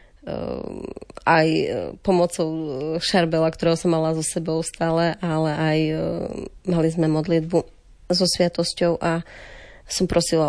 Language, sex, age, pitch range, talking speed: Slovak, female, 30-49, 155-175 Hz, 110 wpm